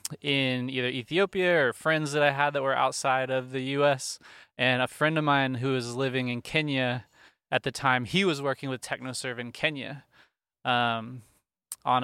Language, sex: English, male